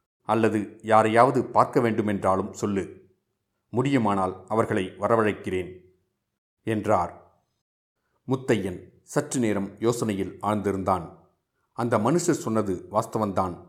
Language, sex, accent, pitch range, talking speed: Tamil, male, native, 95-115 Hz, 80 wpm